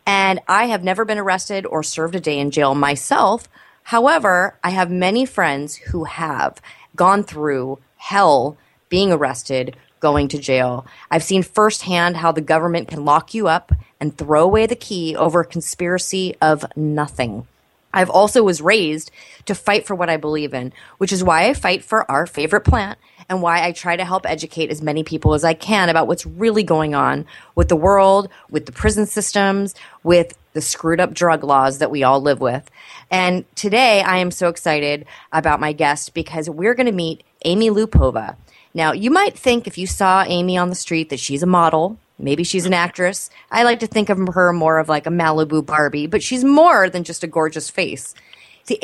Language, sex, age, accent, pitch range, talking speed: English, female, 30-49, American, 150-190 Hz, 195 wpm